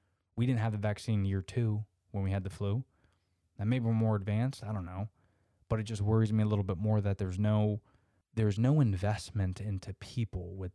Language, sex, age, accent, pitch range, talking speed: English, male, 20-39, American, 95-115 Hz, 210 wpm